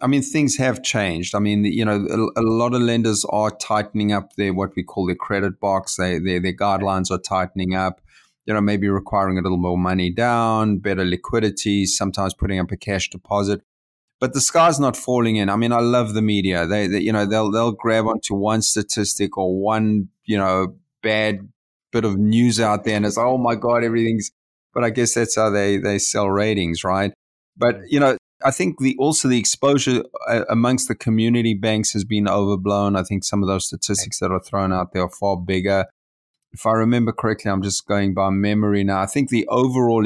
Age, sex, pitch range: 30-49, male, 95-110 Hz